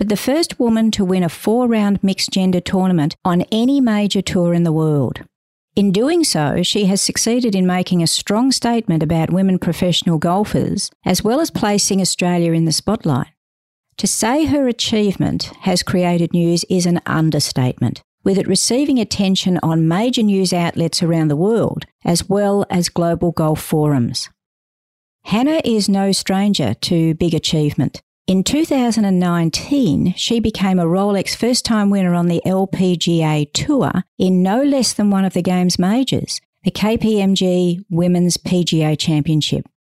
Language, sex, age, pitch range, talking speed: English, female, 50-69, 165-205 Hz, 150 wpm